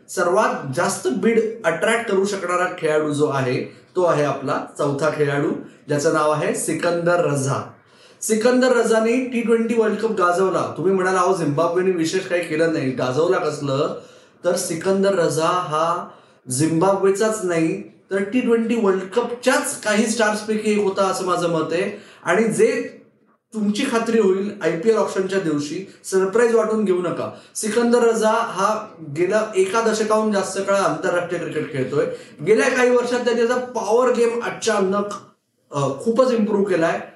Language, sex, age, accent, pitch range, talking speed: Marathi, male, 20-39, native, 175-230 Hz, 135 wpm